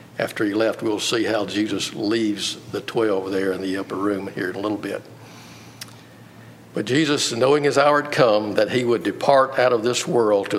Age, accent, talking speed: 60-79, American, 205 wpm